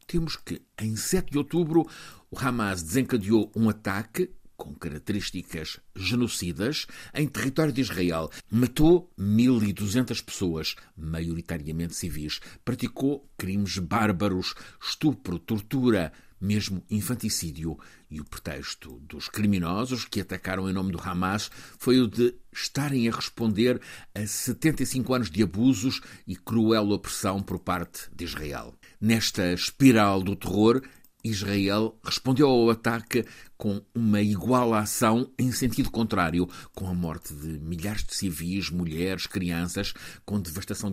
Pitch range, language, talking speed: 90-120 Hz, Portuguese, 125 wpm